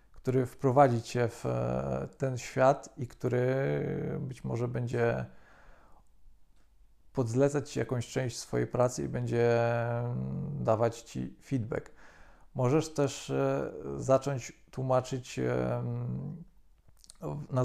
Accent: native